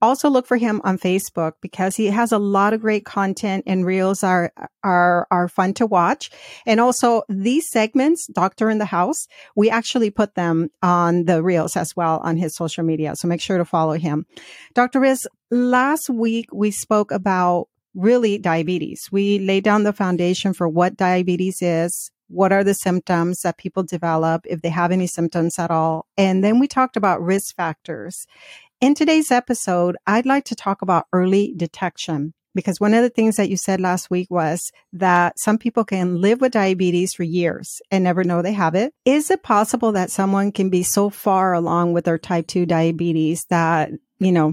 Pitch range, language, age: 175-215 Hz, English, 40-59